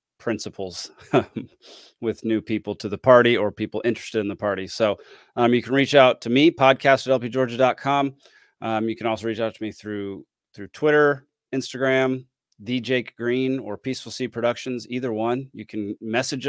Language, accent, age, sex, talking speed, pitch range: English, American, 30-49, male, 165 wpm, 110-140 Hz